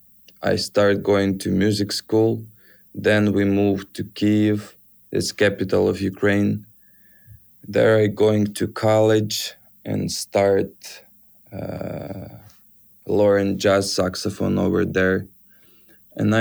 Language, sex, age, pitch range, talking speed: English, male, 20-39, 95-105 Hz, 105 wpm